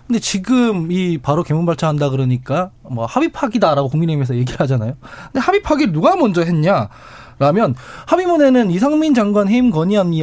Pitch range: 145-225 Hz